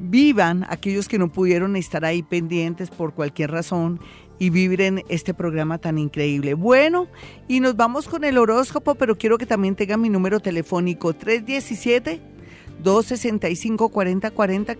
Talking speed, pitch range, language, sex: 135 wpm, 175-230 Hz, Spanish, female